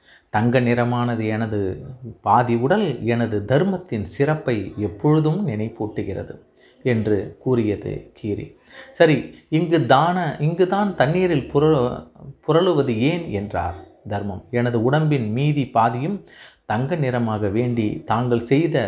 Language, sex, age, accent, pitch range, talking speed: Tamil, male, 30-49, native, 105-140 Hz, 100 wpm